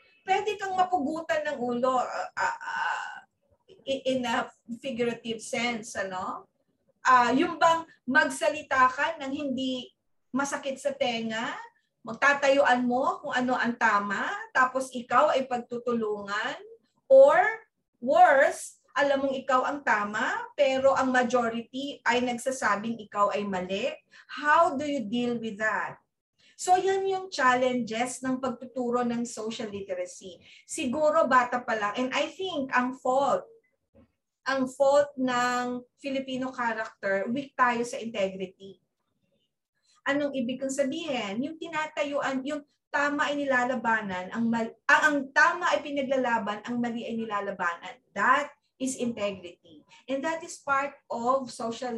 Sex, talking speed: female, 125 wpm